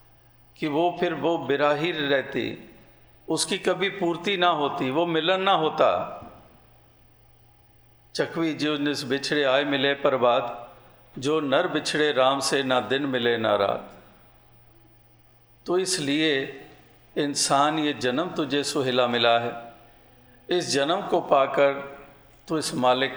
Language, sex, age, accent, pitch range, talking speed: Hindi, male, 50-69, native, 125-165 Hz, 130 wpm